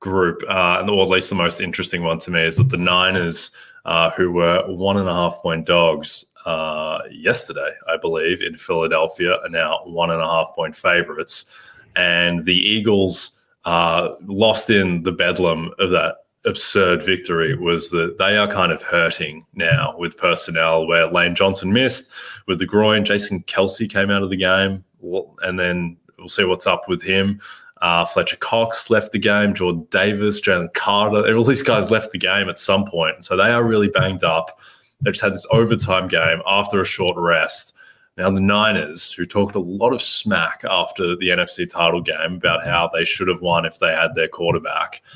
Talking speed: 185 wpm